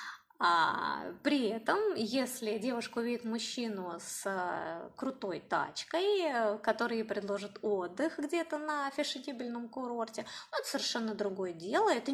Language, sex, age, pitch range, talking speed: Russian, female, 20-39, 215-305 Hz, 125 wpm